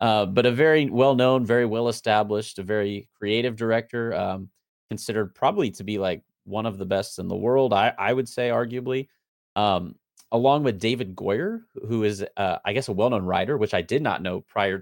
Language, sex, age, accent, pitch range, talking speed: English, male, 30-49, American, 95-125 Hz, 195 wpm